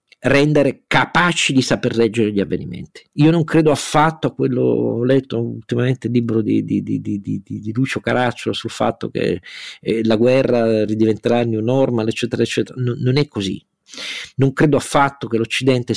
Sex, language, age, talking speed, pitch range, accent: male, Italian, 40-59, 175 wpm, 110-135 Hz, native